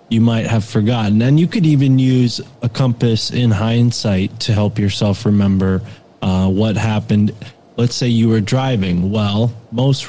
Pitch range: 105-120 Hz